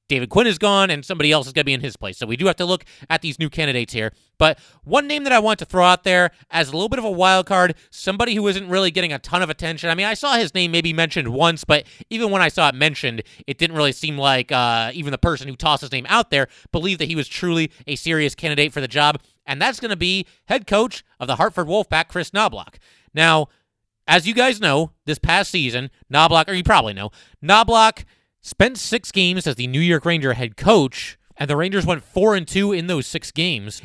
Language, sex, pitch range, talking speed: English, male, 140-185 Hz, 250 wpm